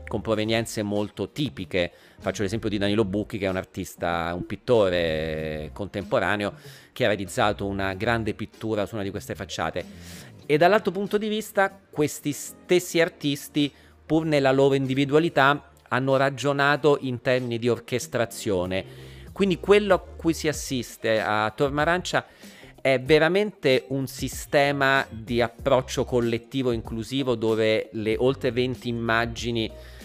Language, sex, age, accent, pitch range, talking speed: Italian, male, 40-59, native, 100-135 Hz, 135 wpm